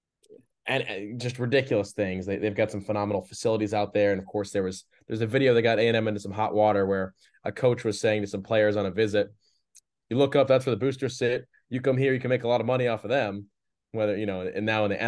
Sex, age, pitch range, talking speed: male, 20-39, 100-120 Hz, 265 wpm